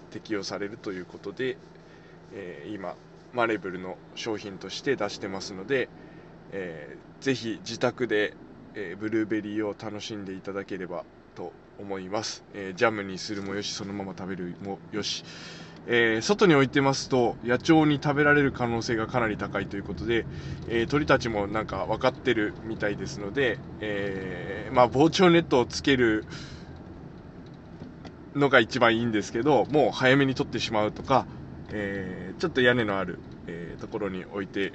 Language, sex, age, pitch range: Japanese, male, 20-39, 105-135 Hz